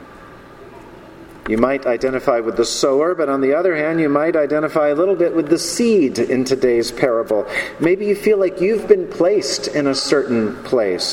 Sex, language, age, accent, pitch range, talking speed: male, English, 40-59, American, 120-150 Hz, 185 wpm